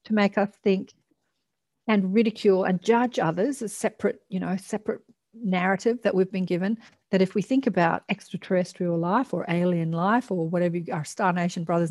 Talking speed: 170 wpm